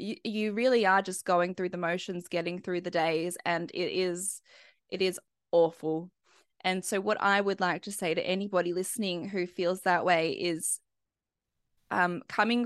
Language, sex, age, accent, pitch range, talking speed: English, female, 20-39, Australian, 180-235 Hz, 170 wpm